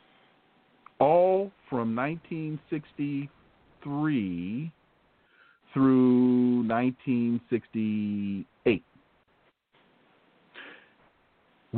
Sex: male